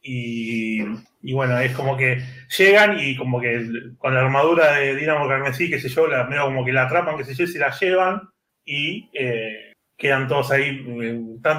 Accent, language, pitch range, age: Argentinian, Spanish, 125-165 Hz, 30-49